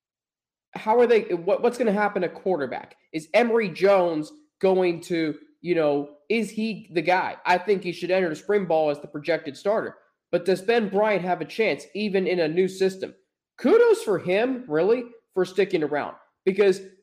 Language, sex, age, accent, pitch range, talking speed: English, male, 20-39, American, 165-220 Hz, 185 wpm